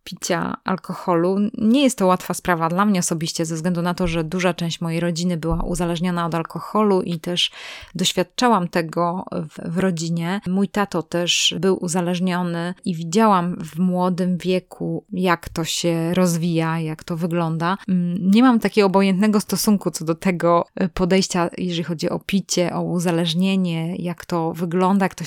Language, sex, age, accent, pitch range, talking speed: Polish, female, 20-39, native, 175-195 Hz, 160 wpm